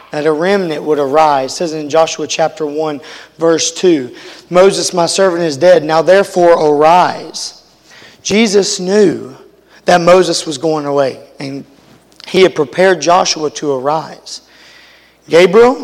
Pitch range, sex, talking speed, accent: 145-185 Hz, male, 135 wpm, American